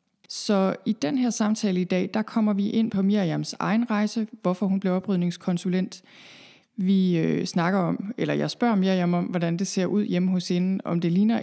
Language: Danish